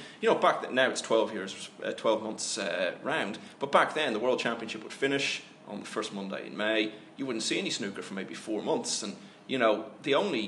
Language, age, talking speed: English, 30-49, 235 wpm